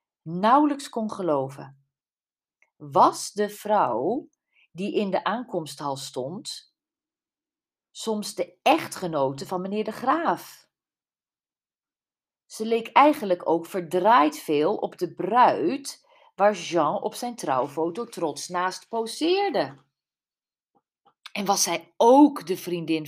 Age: 40-59